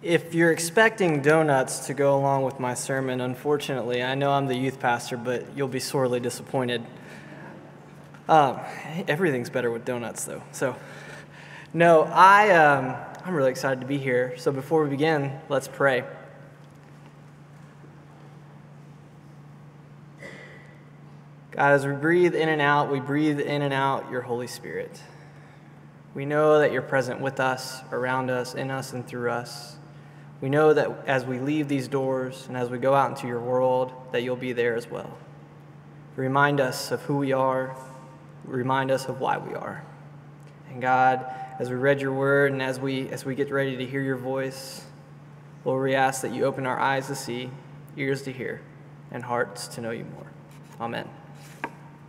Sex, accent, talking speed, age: male, American, 165 wpm, 20-39